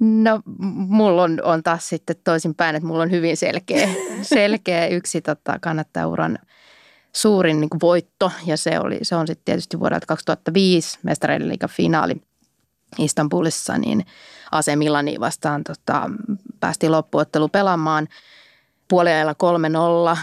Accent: native